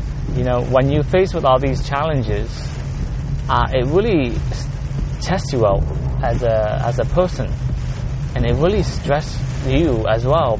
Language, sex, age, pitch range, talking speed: English, male, 20-39, 115-135 Hz, 155 wpm